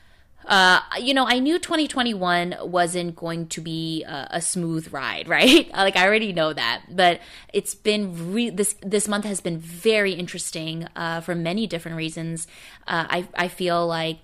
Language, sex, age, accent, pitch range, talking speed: English, female, 20-39, American, 165-185 Hz, 165 wpm